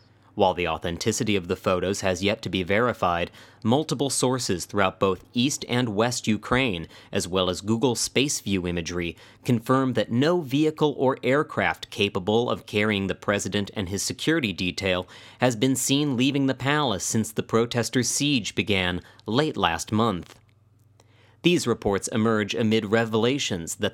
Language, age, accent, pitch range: English, 30-49, American, 100-130 Hz